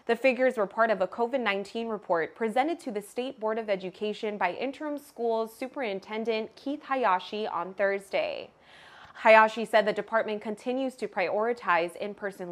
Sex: female